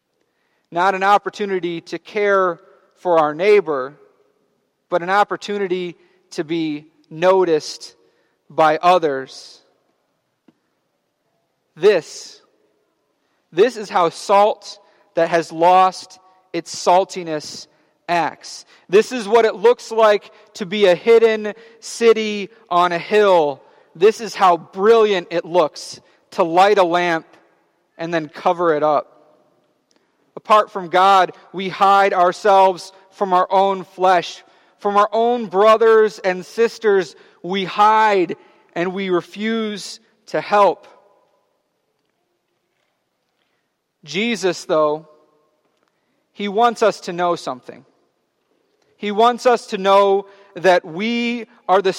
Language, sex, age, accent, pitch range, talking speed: English, male, 30-49, American, 180-225 Hz, 110 wpm